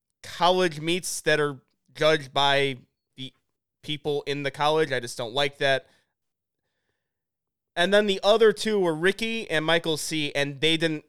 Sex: male